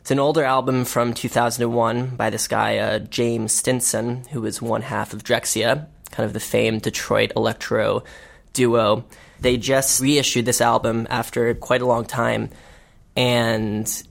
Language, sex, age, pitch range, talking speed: English, male, 10-29, 110-125 Hz, 155 wpm